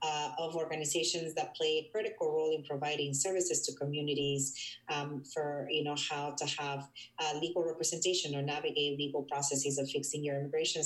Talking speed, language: 160 wpm, English